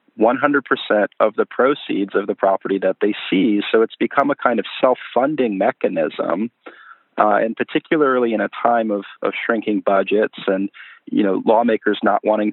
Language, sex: English, male